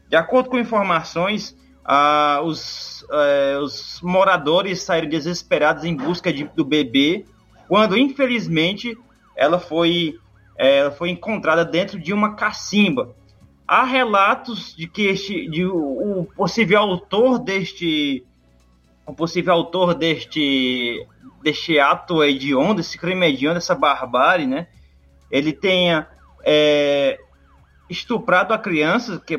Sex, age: male, 20-39